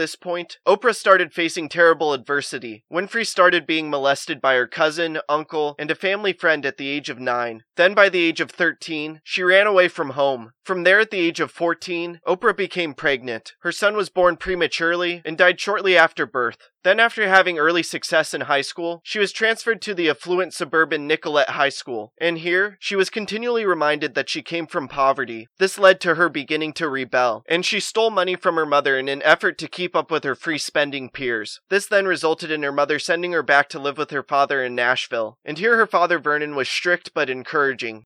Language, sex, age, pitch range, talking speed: English, male, 20-39, 150-185 Hz, 210 wpm